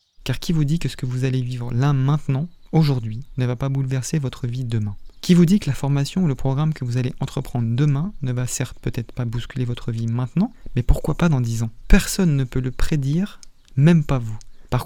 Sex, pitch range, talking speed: male, 125-155 Hz, 235 wpm